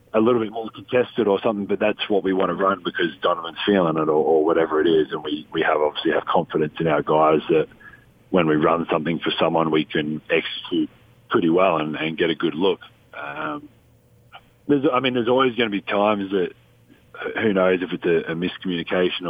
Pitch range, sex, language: 80-100 Hz, male, English